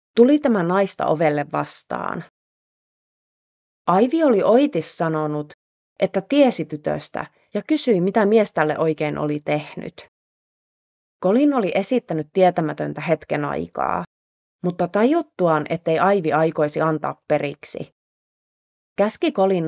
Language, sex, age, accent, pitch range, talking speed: Finnish, female, 30-49, native, 150-215 Hz, 105 wpm